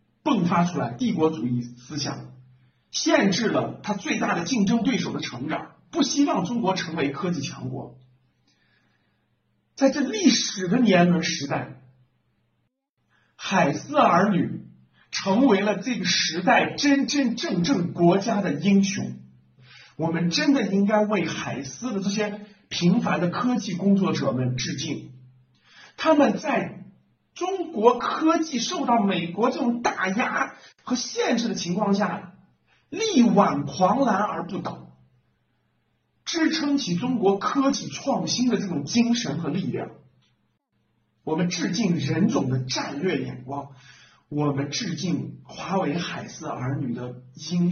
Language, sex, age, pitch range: Chinese, male, 50-69, 135-230 Hz